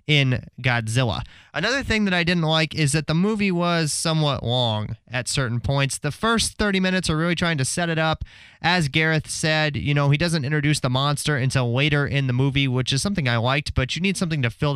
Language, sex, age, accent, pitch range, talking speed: English, male, 30-49, American, 135-170 Hz, 225 wpm